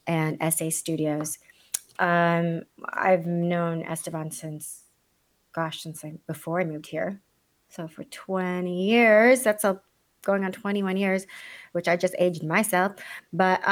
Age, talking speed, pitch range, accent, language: 30-49, 125 wpm, 165-195 Hz, American, English